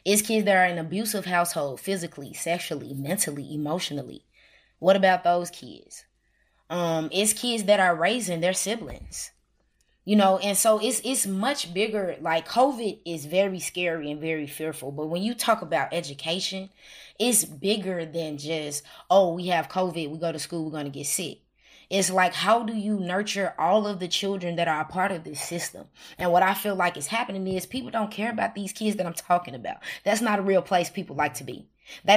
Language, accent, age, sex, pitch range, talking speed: English, American, 20-39, female, 165-205 Hz, 200 wpm